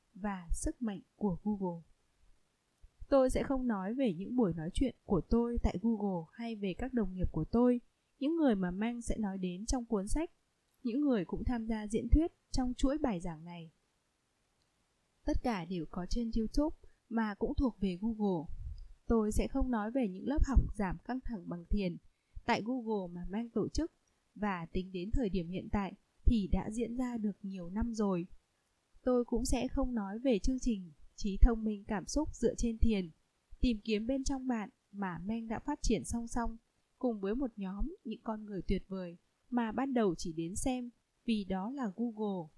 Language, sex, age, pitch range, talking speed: Vietnamese, female, 20-39, 190-240 Hz, 195 wpm